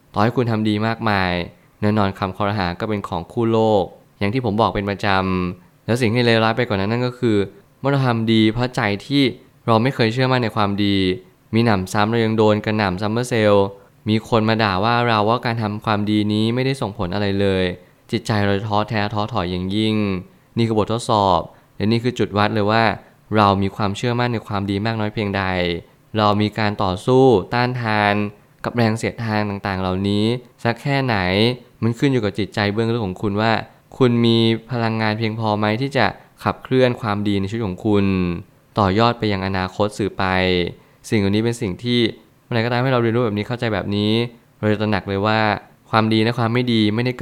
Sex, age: male, 20-39